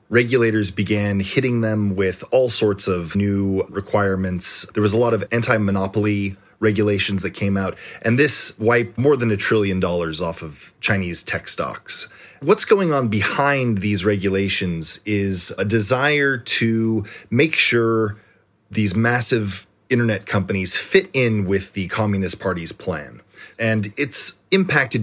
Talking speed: 140 wpm